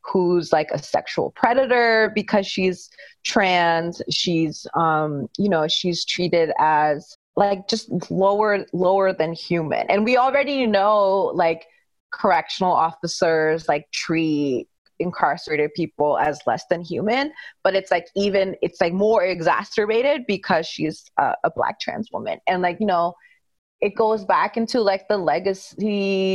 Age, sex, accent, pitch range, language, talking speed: 20-39, female, American, 170-210 Hz, English, 140 wpm